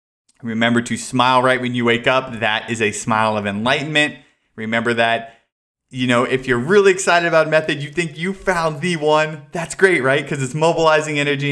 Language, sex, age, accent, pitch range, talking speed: English, male, 30-49, American, 110-135 Hz, 200 wpm